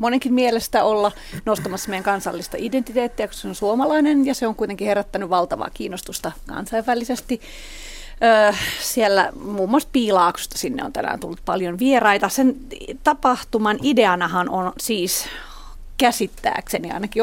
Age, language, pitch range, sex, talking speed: 30-49, Finnish, 190-245 Hz, female, 125 wpm